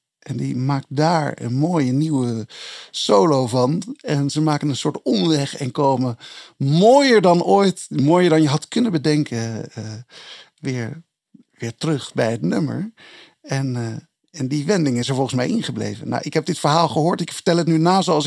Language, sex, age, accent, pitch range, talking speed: Dutch, male, 50-69, Dutch, 135-170 Hz, 180 wpm